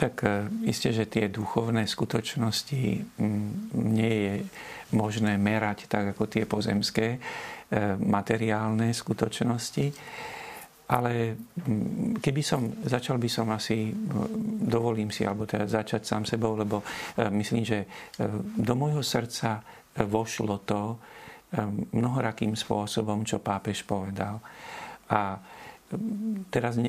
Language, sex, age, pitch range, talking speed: Slovak, male, 50-69, 105-120 Hz, 100 wpm